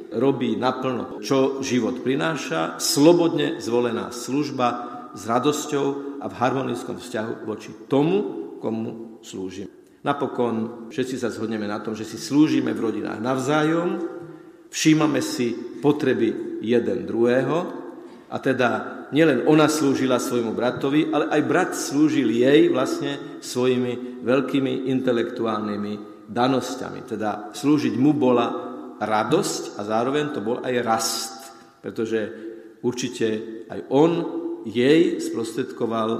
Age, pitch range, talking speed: 50-69, 110-135 Hz, 115 wpm